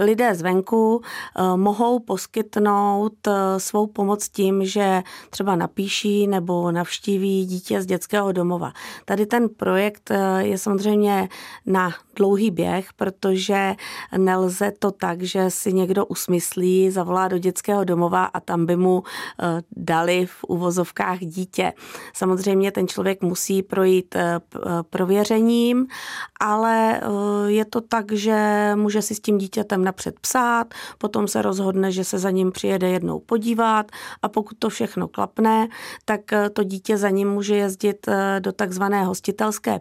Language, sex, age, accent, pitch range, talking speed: Czech, female, 30-49, native, 190-210 Hz, 130 wpm